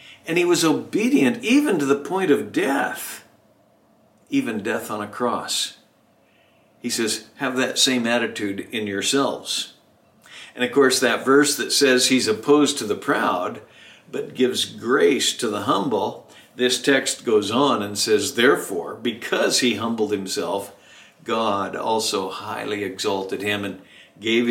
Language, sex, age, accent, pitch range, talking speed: English, male, 60-79, American, 110-140 Hz, 145 wpm